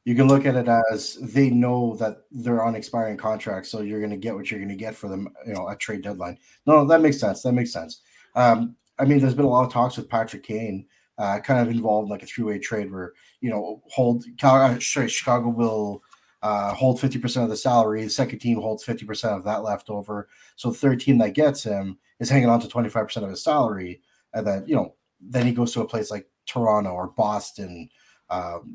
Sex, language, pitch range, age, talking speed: male, English, 105-125 Hz, 30-49, 230 wpm